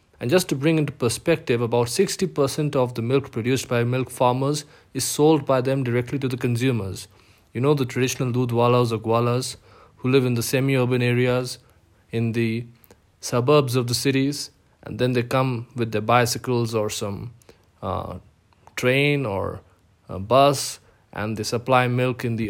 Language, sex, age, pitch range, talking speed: English, male, 20-39, 115-140 Hz, 165 wpm